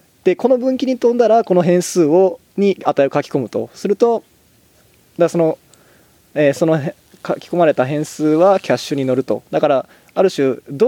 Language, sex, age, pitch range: Japanese, male, 20-39, 130-175 Hz